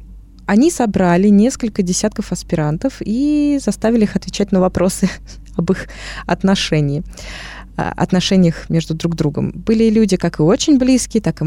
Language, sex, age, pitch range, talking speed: Russian, female, 20-39, 175-220 Hz, 130 wpm